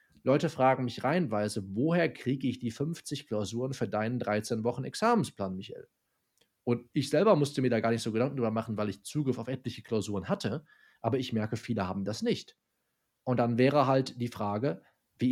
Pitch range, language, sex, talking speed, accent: 110-140 Hz, German, male, 185 wpm, German